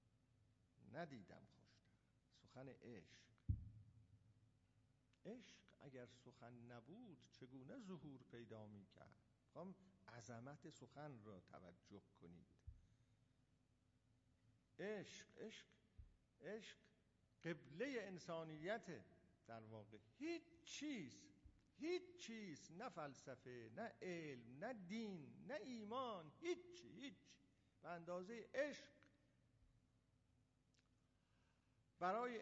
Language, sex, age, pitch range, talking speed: Persian, male, 50-69, 115-185 Hz, 80 wpm